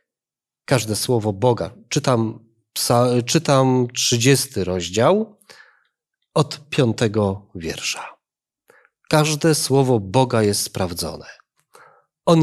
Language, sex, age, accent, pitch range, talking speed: Polish, male, 40-59, native, 120-170 Hz, 75 wpm